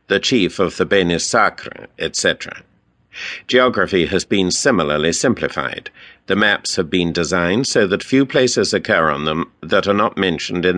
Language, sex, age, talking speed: English, male, 60-79, 160 wpm